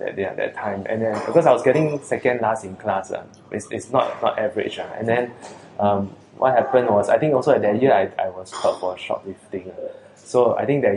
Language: English